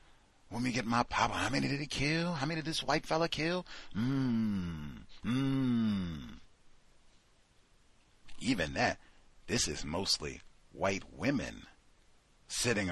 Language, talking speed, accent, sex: English, 125 wpm, American, male